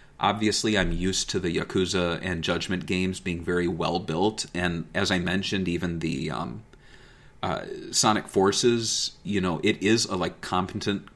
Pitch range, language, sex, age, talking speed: 90-115 Hz, English, male, 30-49, 160 wpm